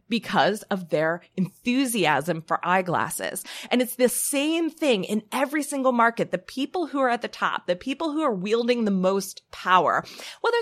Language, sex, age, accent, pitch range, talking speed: English, female, 20-39, American, 185-260 Hz, 175 wpm